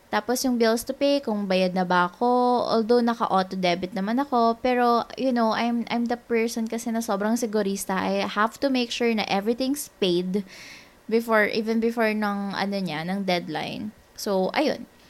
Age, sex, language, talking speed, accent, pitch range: 20-39, female, English, 175 wpm, Filipino, 190-250 Hz